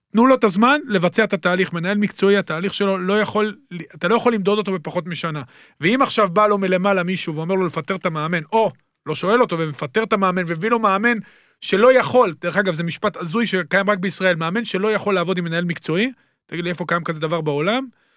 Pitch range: 175-225 Hz